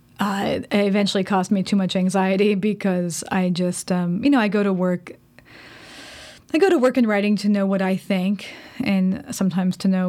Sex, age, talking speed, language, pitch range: female, 20-39, 195 wpm, English, 180-205 Hz